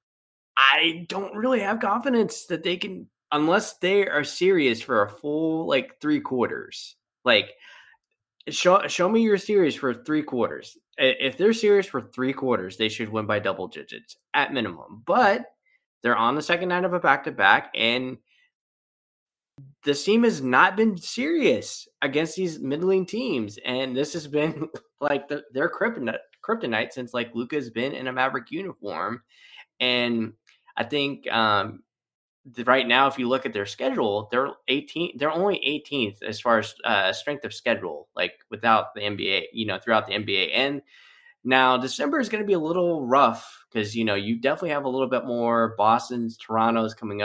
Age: 20-39